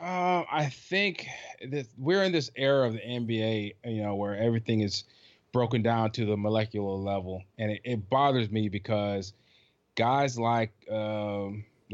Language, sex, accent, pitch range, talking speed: English, male, American, 105-135 Hz, 150 wpm